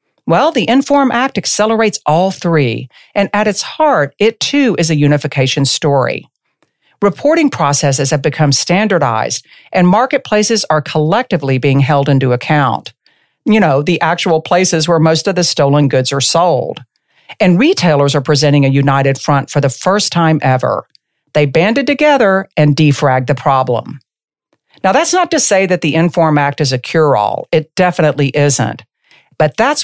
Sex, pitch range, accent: female, 140-195 Hz, American